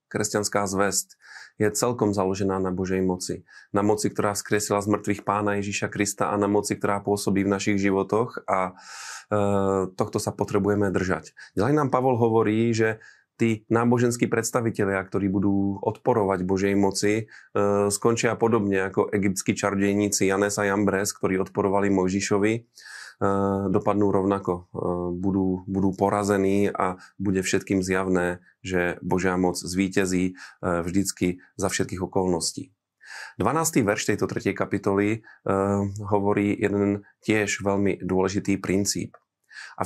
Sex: male